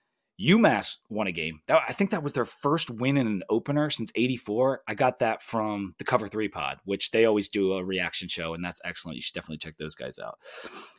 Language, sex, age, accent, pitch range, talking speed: English, male, 30-49, American, 95-125 Hz, 225 wpm